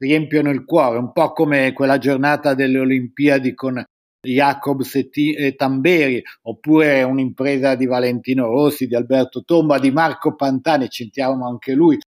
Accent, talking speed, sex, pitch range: native, 150 wpm, male, 130-155 Hz